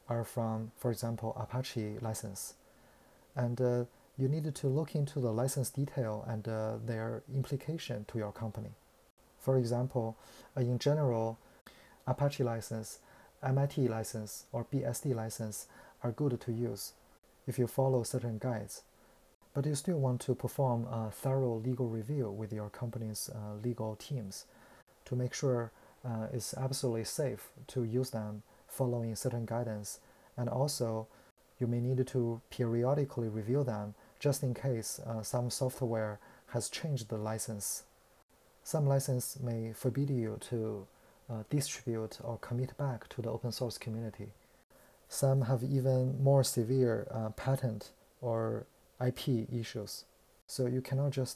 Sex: male